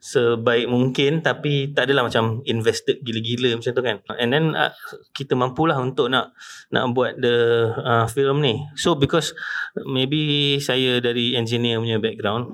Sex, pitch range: male, 115-135 Hz